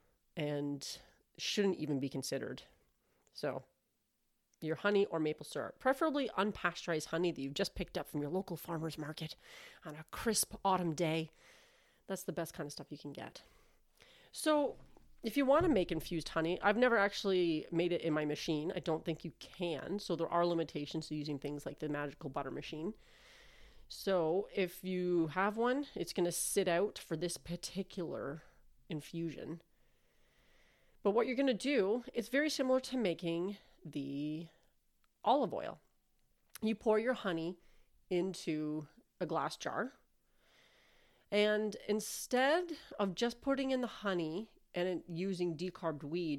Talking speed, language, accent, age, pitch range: 155 wpm, English, American, 30-49, 160-210 Hz